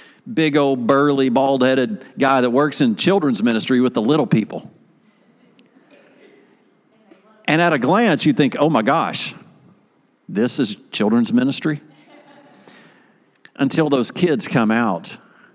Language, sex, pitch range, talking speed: English, male, 110-150 Hz, 125 wpm